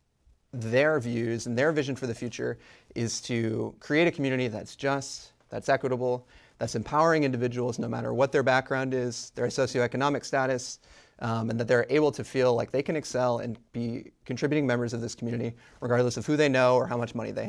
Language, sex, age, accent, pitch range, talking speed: English, male, 30-49, American, 115-140 Hz, 195 wpm